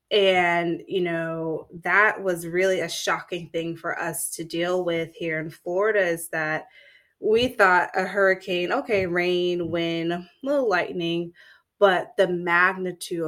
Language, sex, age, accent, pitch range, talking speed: English, female, 20-39, American, 160-185 Hz, 145 wpm